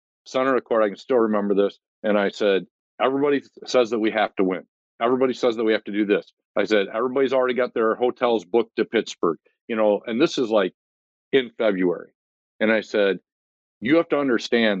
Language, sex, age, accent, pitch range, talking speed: English, male, 50-69, American, 95-125 Hz, 205 wpm